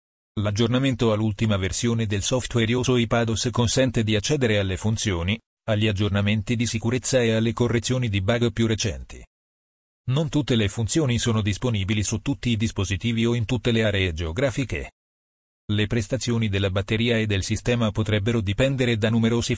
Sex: male